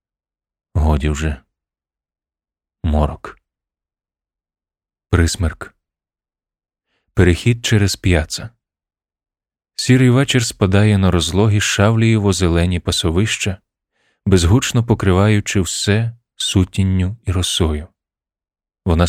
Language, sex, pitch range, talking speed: Ukrainian, male, 80-105 Hz, 65 wpm